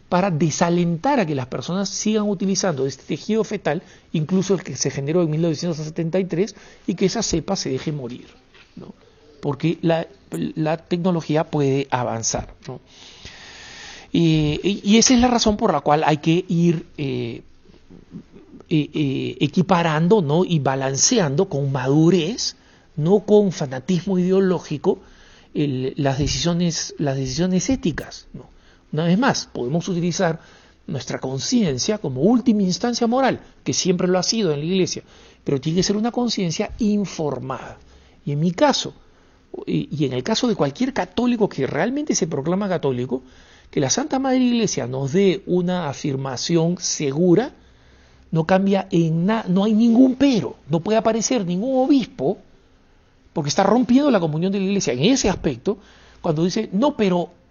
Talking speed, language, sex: 150 wpm, Spanish, male